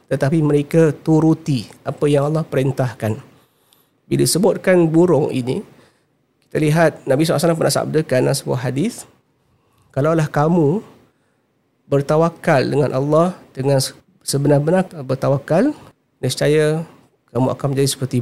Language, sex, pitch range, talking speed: Malay, male, 130-155 Hz, 110 wpm